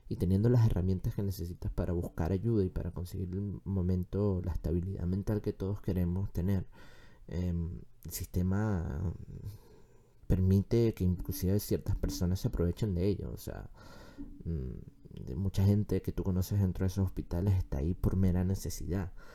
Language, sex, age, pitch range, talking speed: Spanish, male, 20-39, 90-105 Hz, 155 wpm